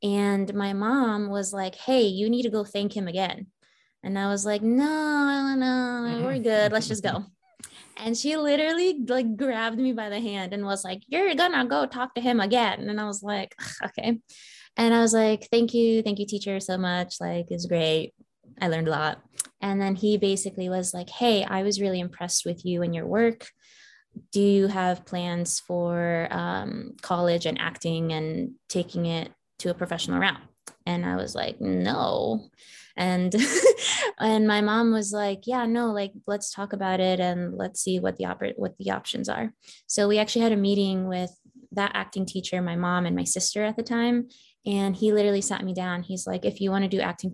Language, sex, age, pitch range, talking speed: English, female, 20-39, 175-225 Hz, 200 wpm